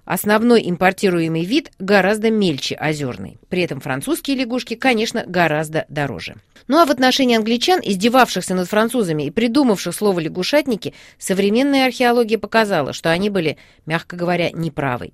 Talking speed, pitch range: 135 wpm, 170-240 Hz